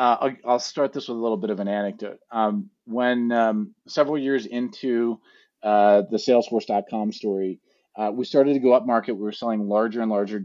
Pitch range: 105-120 Hz